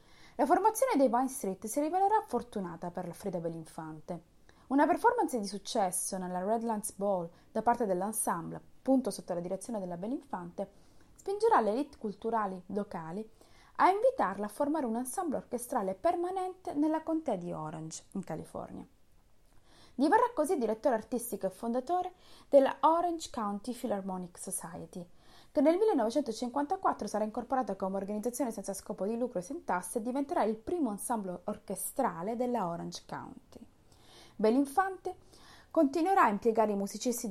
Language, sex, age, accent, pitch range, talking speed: Italian, female, 20-39, native, 195-290 Hz, 140 wpm